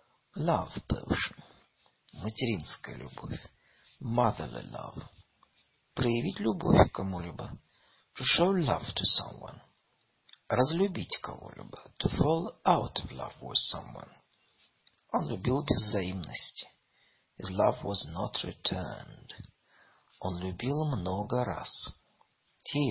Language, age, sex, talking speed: Russian, 50-69, male, 95 wpm